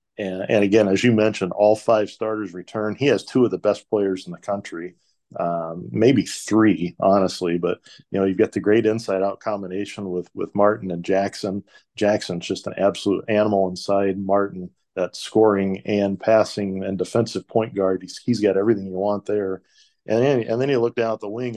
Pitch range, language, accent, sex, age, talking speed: 95-110 Hz, English, American, male, 40-59, 190 wpm